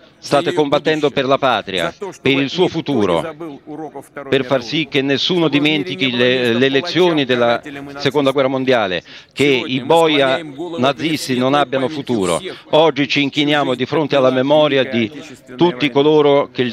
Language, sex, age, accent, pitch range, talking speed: Italian, male, 50-69, native, 125-150 Hz, 145 wpm